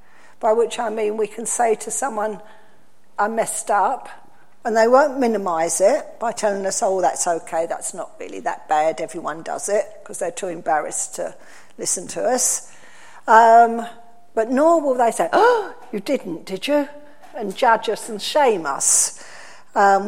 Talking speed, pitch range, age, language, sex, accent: 170 wpm, 200-250 Hz, 50-69, English, female, British